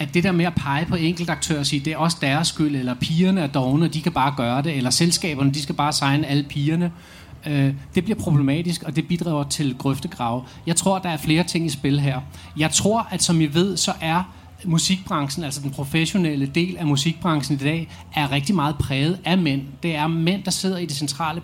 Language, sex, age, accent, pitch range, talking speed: English, male, 30-49, Danish, 140-180 Hz, 225 wpm